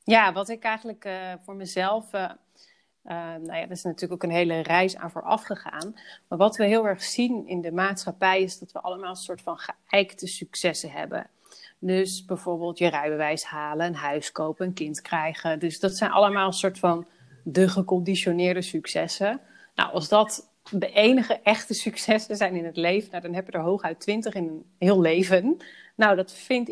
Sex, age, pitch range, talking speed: female, 30-49, 180-225 Hz, 195 wpm